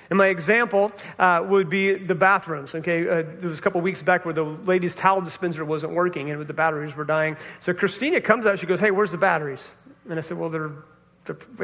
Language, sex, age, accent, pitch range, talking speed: English, male, 40-59, American, 170-205 Hz, 230 wpm